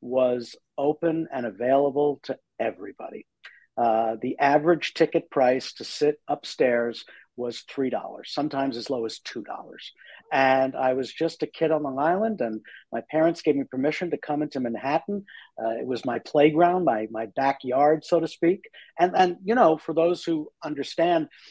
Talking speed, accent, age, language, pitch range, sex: 165 wpm, American, 50-69, English, 135-180 Hz, male